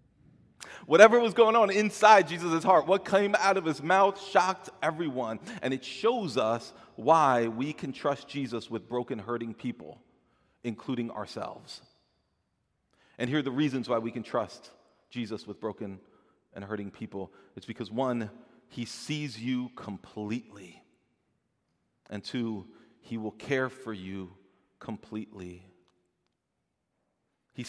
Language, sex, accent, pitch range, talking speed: English, male, American, 115-185 Hz, 130 wpm